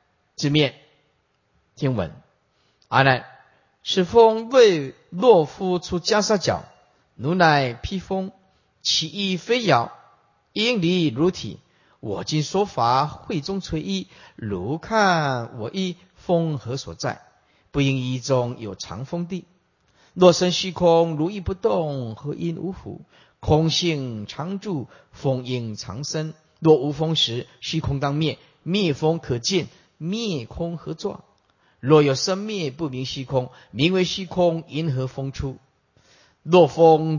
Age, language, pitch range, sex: 50-69, Chinese, 135-180 Hz, male